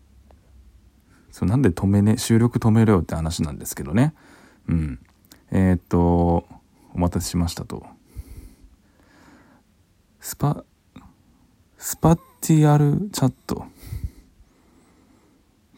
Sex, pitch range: male, 85-125 Hz